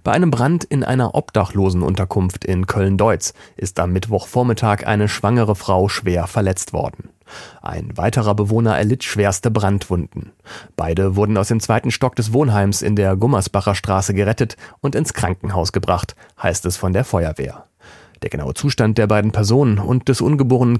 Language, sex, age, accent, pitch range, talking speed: German, male, 40-59, German, 95-120 Hz, 160 wpm